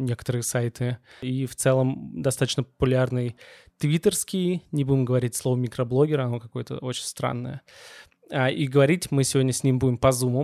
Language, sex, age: Russian, male, 20-39